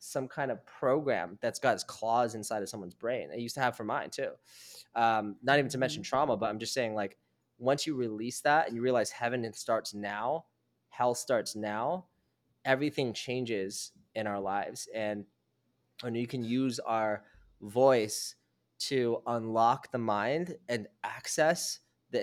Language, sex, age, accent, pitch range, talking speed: English, male, 20-39, American, 110-135 Hz, 165 wpm